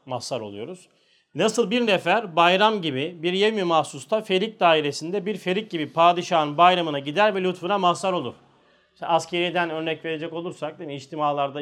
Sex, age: male, 40-59